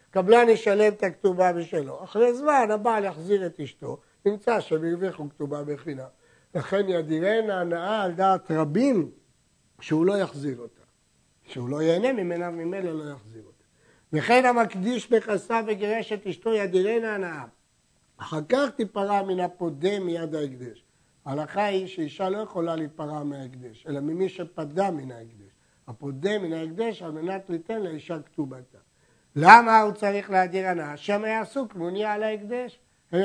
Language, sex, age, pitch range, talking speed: Hebrew, male, 60-79, 155-210 Hz, 145 wpm